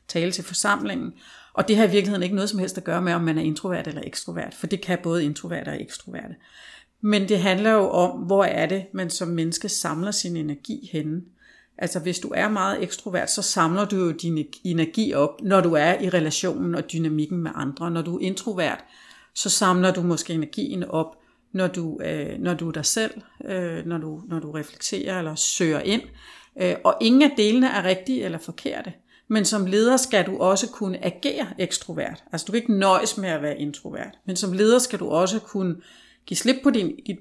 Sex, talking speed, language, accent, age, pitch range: female, 205 wpm, Danish, native, 50-69, 170-210 Hz